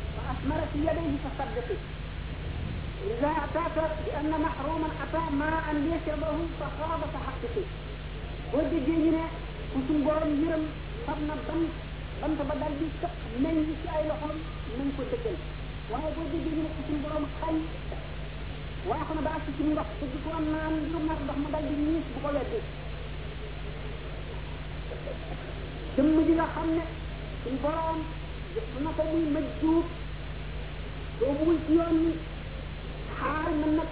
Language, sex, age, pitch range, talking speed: French, female, 50-69, 300-320 Hz, 40 wpm